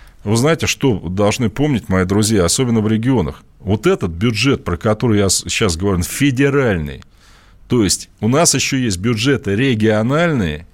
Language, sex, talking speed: Russian, male, 150 wpm